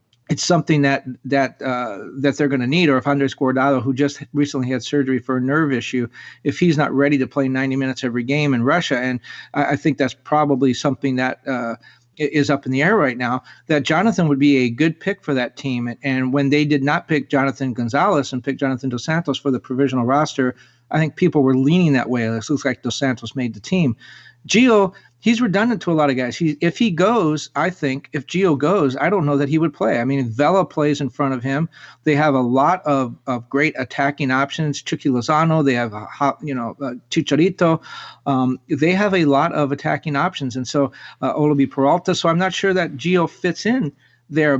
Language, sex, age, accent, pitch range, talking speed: English, male, 40-59, American, 130-160 Hz, 220 wpm